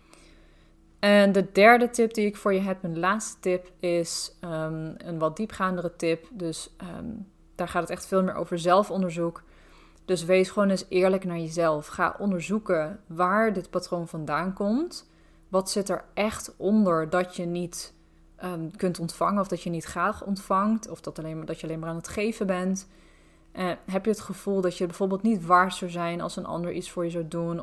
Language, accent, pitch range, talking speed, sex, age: Dutch, Dutch, 170-190 Hz, 185 wpm, female, 20-39